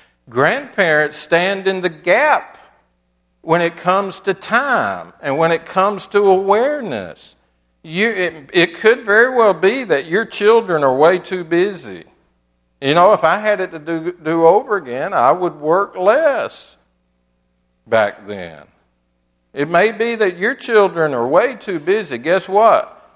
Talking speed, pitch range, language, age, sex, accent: 155 wpm, 115-190 Hz, English, 60-79, male, American